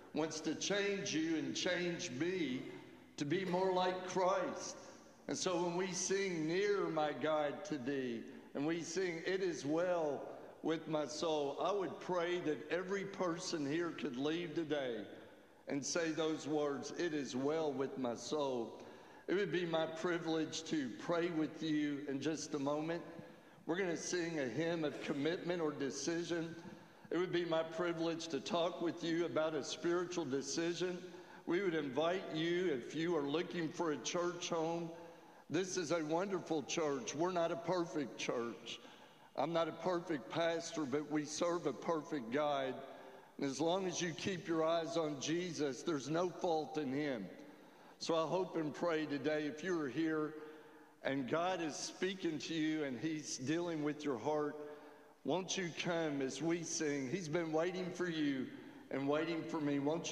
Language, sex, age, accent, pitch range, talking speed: English, male, 60-79, American, 150-175 Hz, 170 wpm